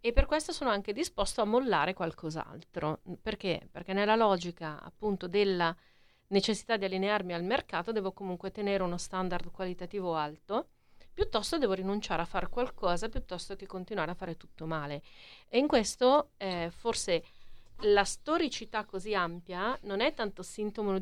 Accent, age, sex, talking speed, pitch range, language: native, 40-59, female, 150 wpm, 175-215 Hz, Italian